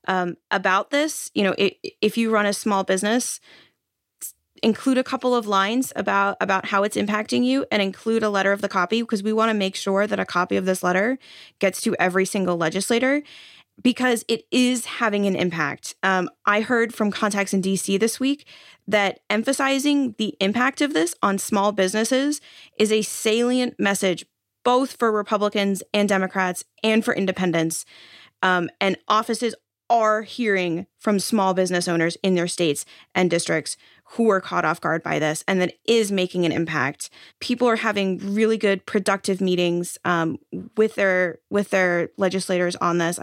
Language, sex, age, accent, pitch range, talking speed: English, female, 20-39, American, 180-225 Hz, 175 wpm